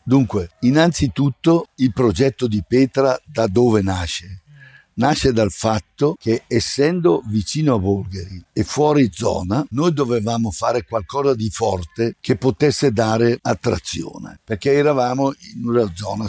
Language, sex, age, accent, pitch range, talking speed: English, male, 60-79, Italian, 105-135 Hz, 130 wpm